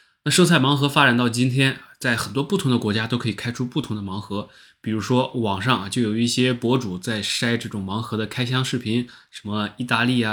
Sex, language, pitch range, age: male, Chinese, 105-130 Hz, 20-39